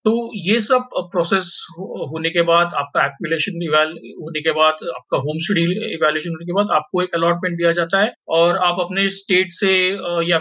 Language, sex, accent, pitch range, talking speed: Hindi, male, native, 170-200 Hz, 180 wpm